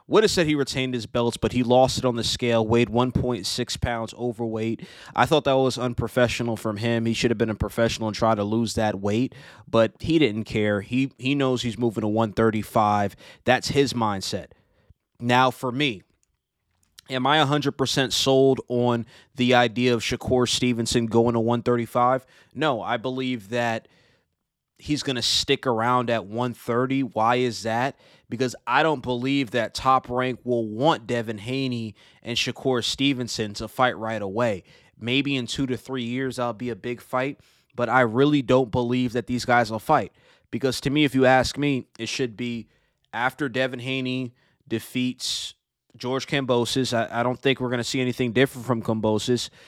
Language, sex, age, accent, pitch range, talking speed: English, male, 20-39, American, 115-130 Hz, 180 wpm